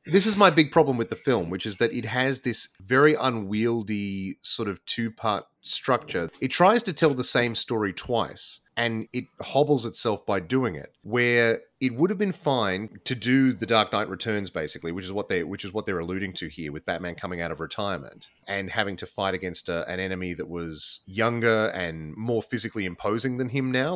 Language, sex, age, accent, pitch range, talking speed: English, male, 30-49, Australian, 95-125 Hz, 210 wpm